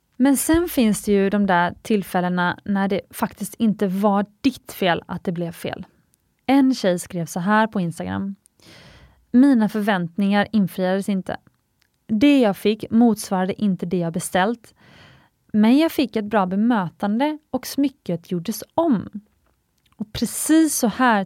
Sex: female